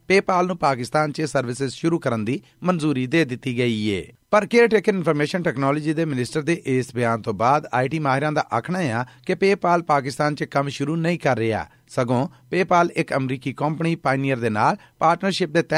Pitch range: 125-165 Hz